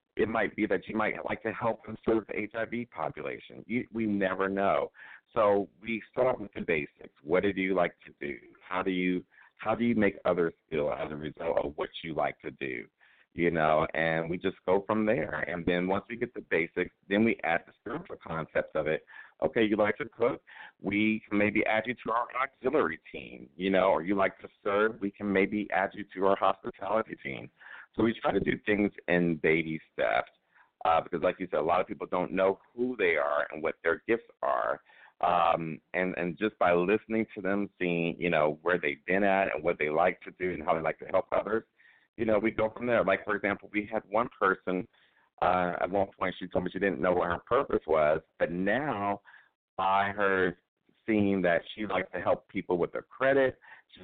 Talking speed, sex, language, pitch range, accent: 220 wpm, male, English, 90-110 Hz, American